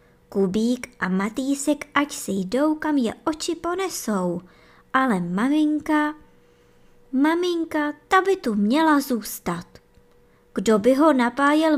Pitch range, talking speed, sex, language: 195-295 Hz, 110 wpm, male, Czech